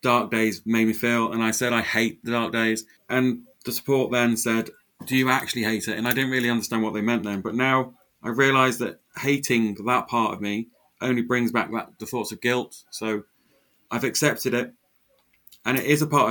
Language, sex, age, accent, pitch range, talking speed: English, male, 30-49, British, 105-120 Hz, 215 wpm